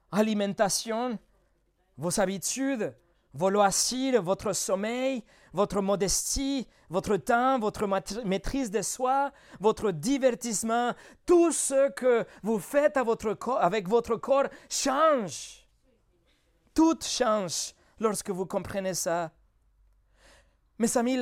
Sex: male